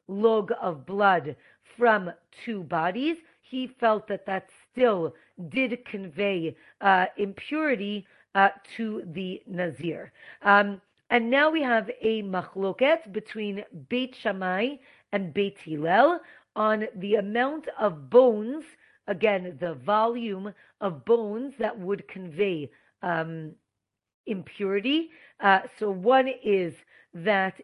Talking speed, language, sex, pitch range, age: 115 wpm, English, female, 195-245 Hz, 40-59